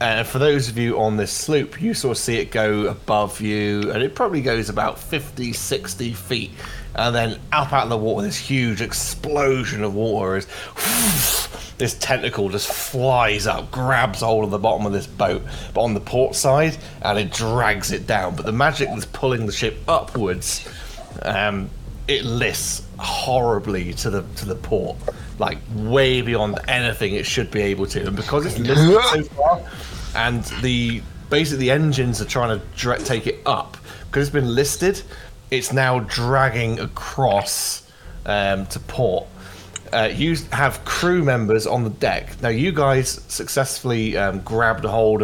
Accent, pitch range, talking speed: British, 105-130 Hz, 170 wpm